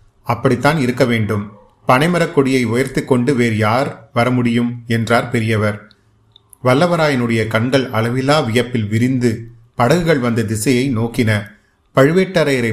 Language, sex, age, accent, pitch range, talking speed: Tamil, male, 30-49, native, 115-140 Hz, 105 wpm